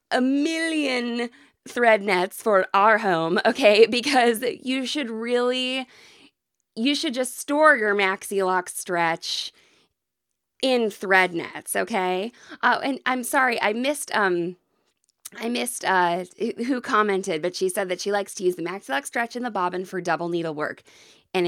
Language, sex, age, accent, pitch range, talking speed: English, female, 20-39, American, 180-280 Hz, 150 wpm